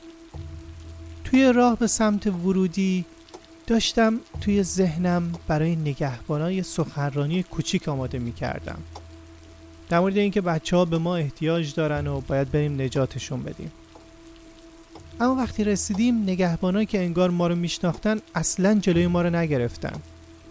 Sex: male